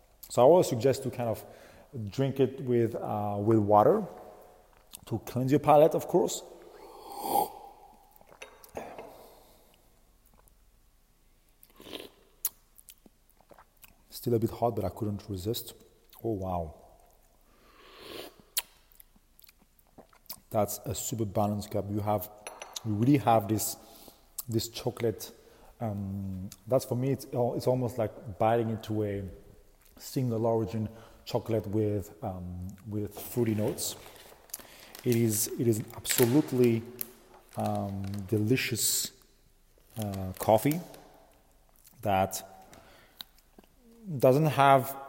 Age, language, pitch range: 40-59, English, 105-135 Hz